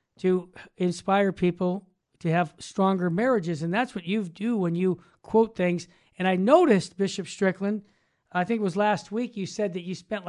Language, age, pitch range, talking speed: English, 50-69, 180-220 Hz, 185 wpm